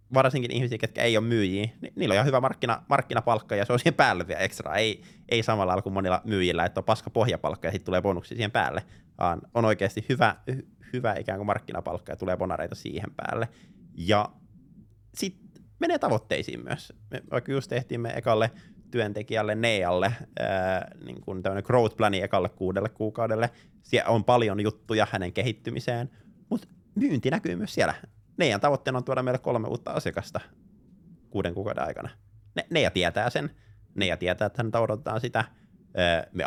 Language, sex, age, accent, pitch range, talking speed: Finnish, male, 20-39, native, 100-120 Hz, 175 wpm